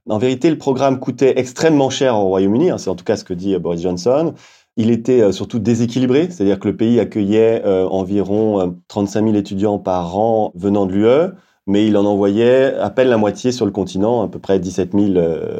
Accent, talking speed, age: French, 210 wpm, 30-49